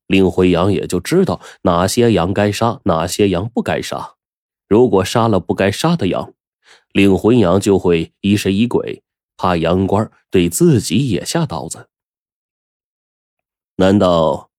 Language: Chinese